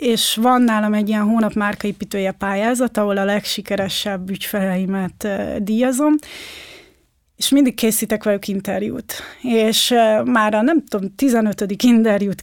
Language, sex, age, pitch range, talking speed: Hungarian, female, 30-49, 200-240 Hz, 120 wpm